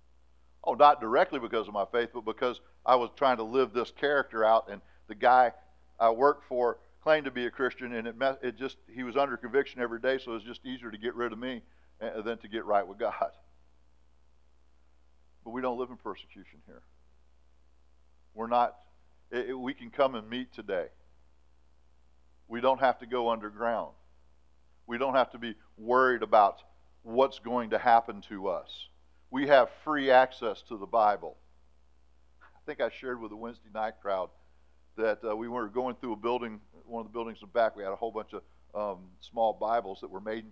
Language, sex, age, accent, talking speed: English, male, 50-69, American, 200 wpm